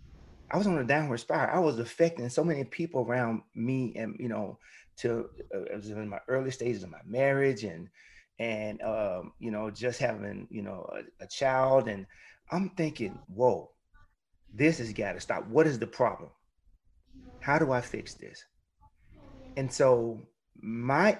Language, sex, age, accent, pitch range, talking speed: English, male, 30-49, American, 110-145 Hz, 170 wpm